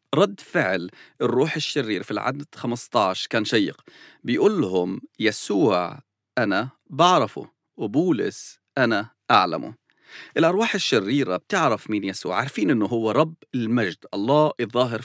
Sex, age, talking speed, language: male, 40-59, 110 wpm, English